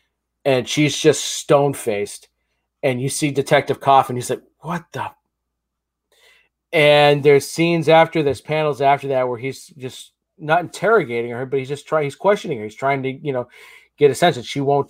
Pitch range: 120-150 Hz